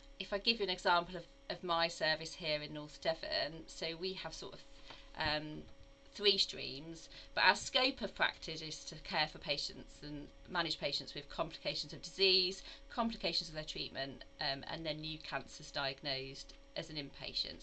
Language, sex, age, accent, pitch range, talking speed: English, female, 40-59, British, 150-180 Hz, 175 wpm